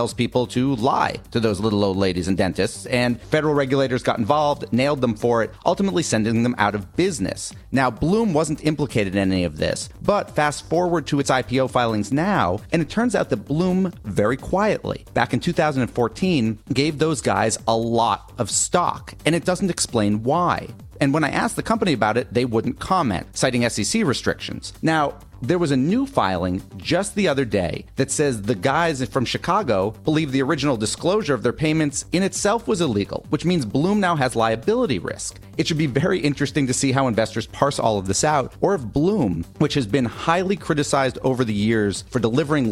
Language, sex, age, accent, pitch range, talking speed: English, male, 40-59, American, 110-155 Hz, 195 wpm